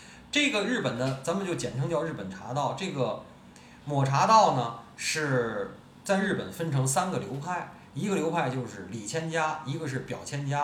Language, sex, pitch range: Chinese, male, 125-175 Hz